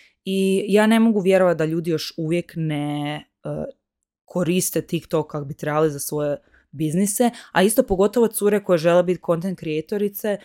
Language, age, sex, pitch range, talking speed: Croatian, 20-39, female, 165-195 Hz, 160 wpm